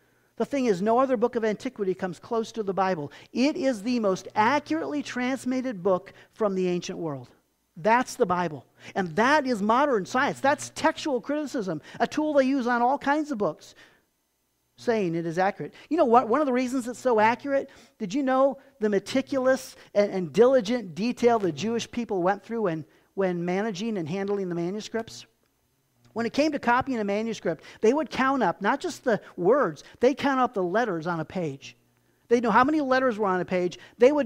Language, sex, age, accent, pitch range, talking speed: English, male, 50-69, American, 190-260 Hz, 195 wpm